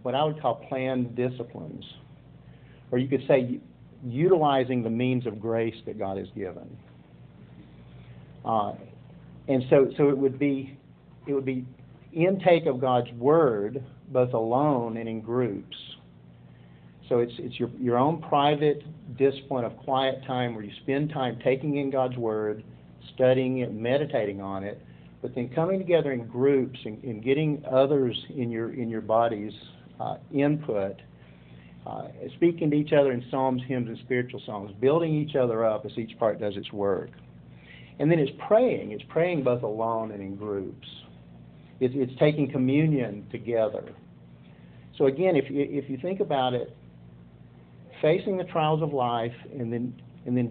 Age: 50-69